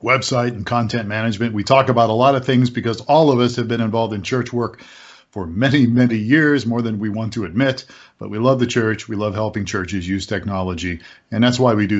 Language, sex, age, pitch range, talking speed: English, male, 40-59, 105-135 Hz, 235 wpm